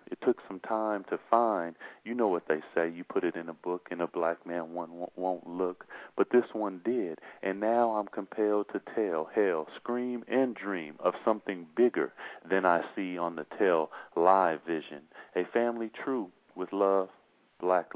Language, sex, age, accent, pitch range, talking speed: English, male, 40-59, American, 90-105 Hz, 185 wpm